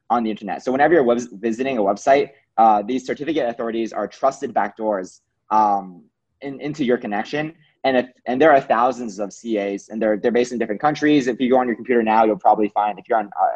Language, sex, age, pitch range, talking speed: English, male, 20-39, 105-125 Hz, 220 wpm